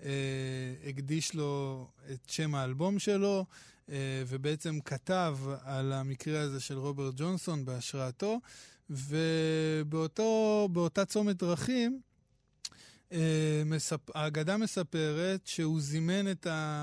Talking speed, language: 95 wpm, Hebrew